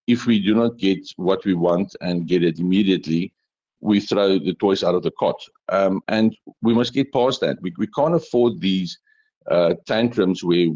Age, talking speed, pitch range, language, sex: 50-69, 195 wpm, 90-115 Hz, English, male